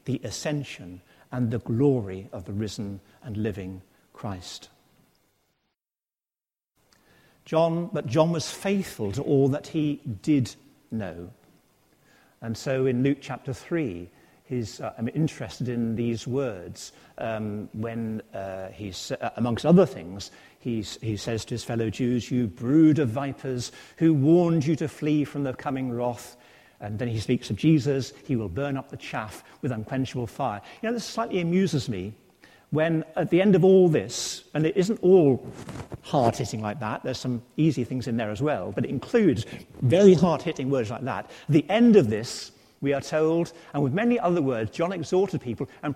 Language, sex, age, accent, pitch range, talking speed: English, male, 50-69, British, 115-160 Hz, 170 wpm